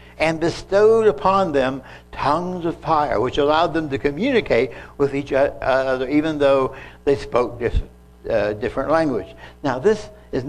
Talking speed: 145 wpm